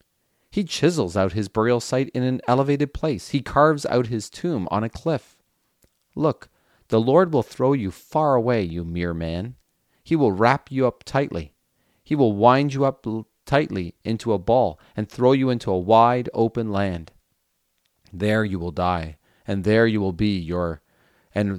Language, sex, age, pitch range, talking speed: English, male, 40-59, 90-120 Hz, 175 wpm